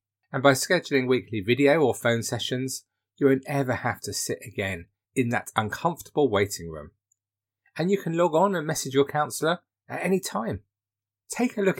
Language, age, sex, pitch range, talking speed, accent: English, 30-49, male, 110-160 Hz, 180 wpm, British